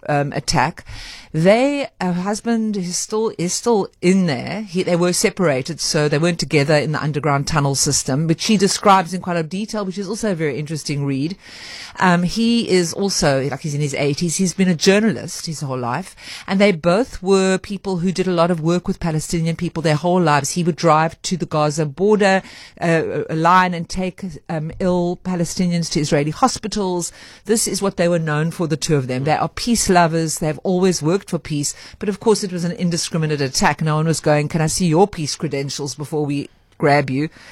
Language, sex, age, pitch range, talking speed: English, female, 50-69, 155-200 Hz, 205 wpm